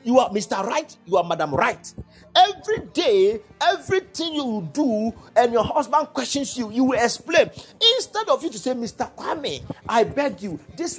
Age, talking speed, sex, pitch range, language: 40-59, 175 wpm, male, 225-330 Hz, English